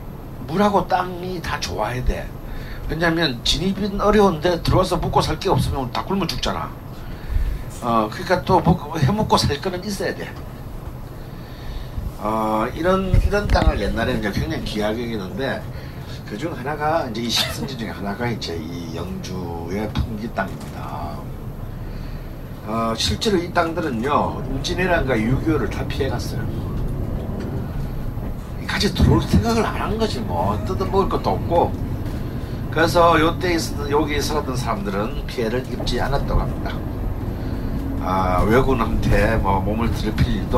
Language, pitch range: Korean, 105-140 Hz